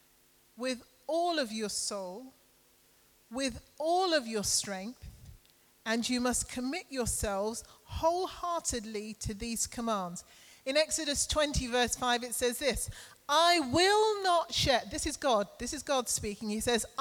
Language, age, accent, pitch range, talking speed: English, 40-59, British, 185-270 Hz, 140 wpm